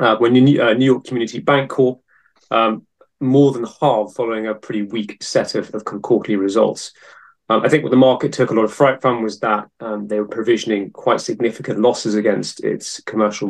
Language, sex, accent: English, male, British